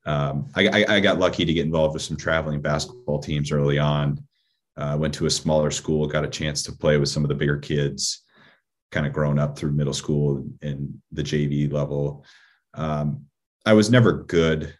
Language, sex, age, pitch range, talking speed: English, male, 30-49, 75-80 Hz, 200 wpm